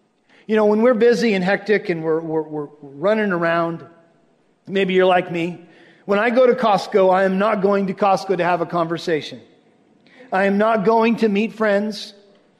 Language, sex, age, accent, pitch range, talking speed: English, male, 50-69, American, 195-265 Hz, 185 wpm